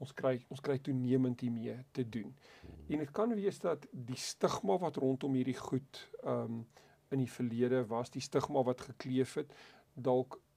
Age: 40-59